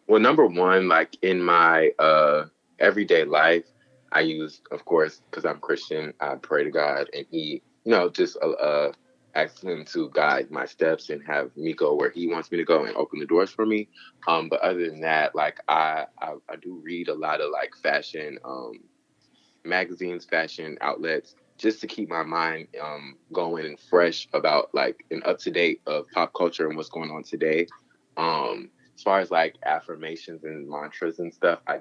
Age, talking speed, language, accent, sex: 20-39, 190 wpm, English, American, male